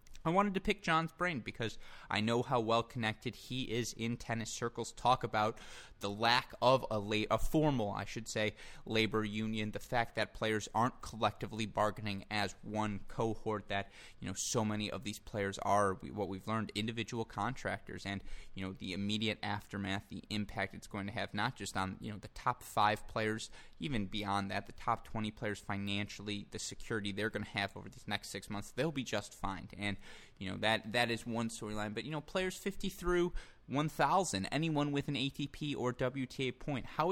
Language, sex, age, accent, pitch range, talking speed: English, male, 20-39, American, 100-120 Hz, 200 wpm